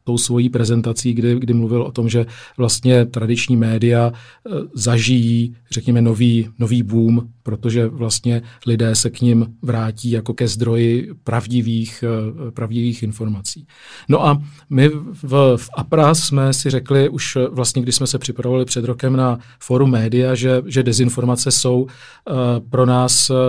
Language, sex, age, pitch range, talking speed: Czech, male, 40-59, 120-125 Hz, 145 wpm